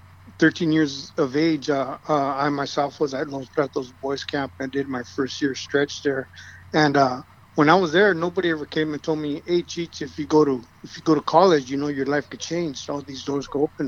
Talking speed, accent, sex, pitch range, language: 240 wpm, American, male, 130-155 Hz, English